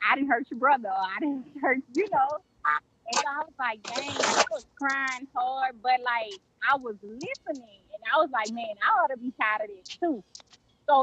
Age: 20-39